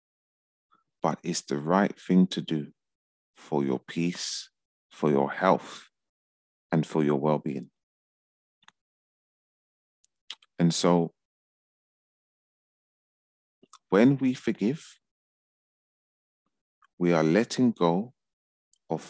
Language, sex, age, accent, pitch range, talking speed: English, male, 40-59, British, 75-90 Hz, 85 wpm